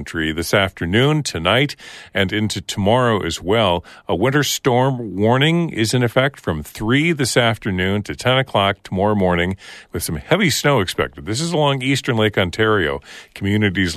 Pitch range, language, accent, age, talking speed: 85-115 Hz, English, American, 50-69, 160 wpm